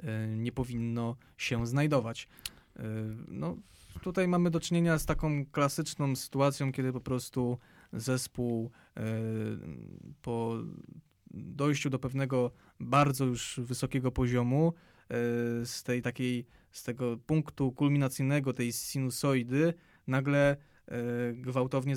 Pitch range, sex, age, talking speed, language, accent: 120-140 Hz, male, 20-39, 100 wpm, Polish, native